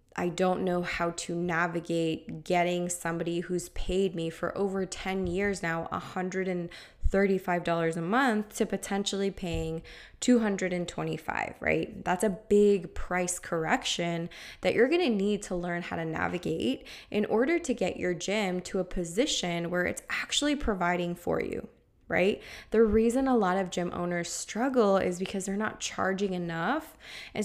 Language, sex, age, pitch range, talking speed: English, female, 20-39, 175-210 Hz, 155 wpm